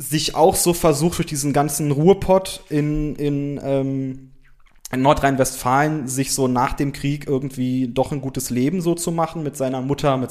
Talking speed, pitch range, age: 175 wpm, 135-170 Hz, 20-39